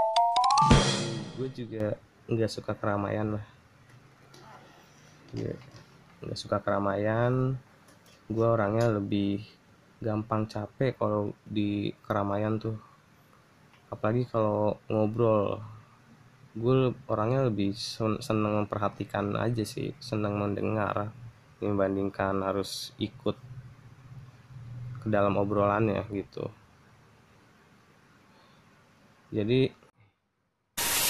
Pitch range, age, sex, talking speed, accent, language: 105-125 Hz, 20-39, male, 70 wpm, native, Indonesian